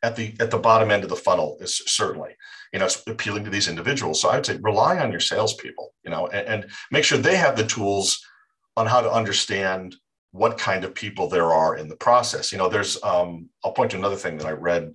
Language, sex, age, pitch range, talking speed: English, male, 50-69, 90-145 Hz, 245 wpm